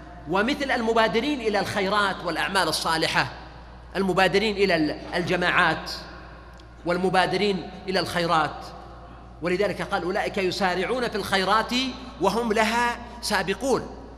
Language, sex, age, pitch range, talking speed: Arabic, male, 40-59, 175-240 Hz, 90 wpm